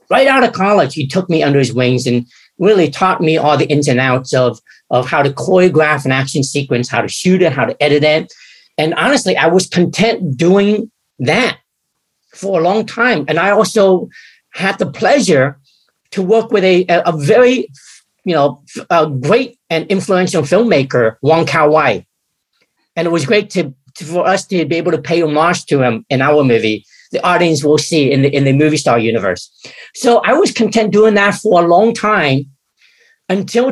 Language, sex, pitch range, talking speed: English, male, 140-195 Hz, 190 wpm